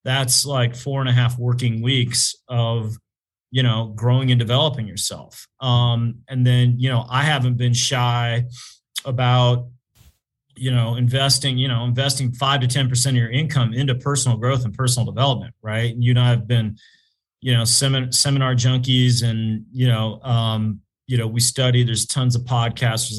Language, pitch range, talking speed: English, 120-130 Hz, 175 wpm